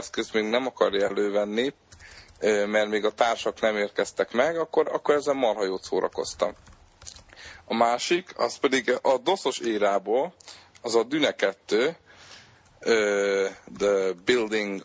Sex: male